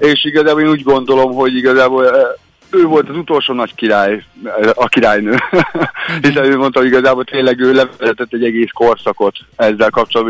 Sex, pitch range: male, 115-140 Hz